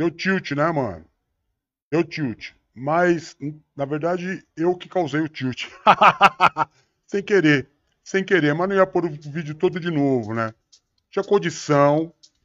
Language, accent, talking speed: English, Brazilian, 145 wpm